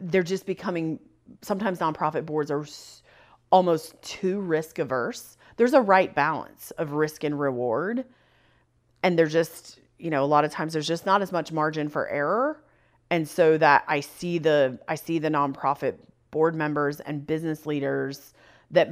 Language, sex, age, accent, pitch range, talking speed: English, female, 30-49, American, 145-185 Hz, 165 wpm